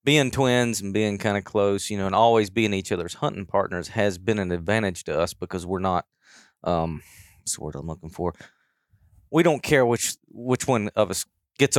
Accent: American